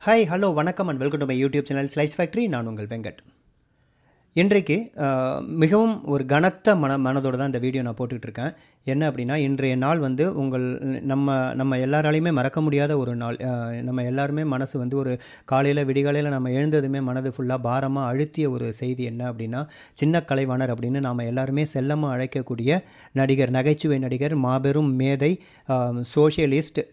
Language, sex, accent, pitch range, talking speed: Tamil, male, native, 130-150 Hz, 155 wpm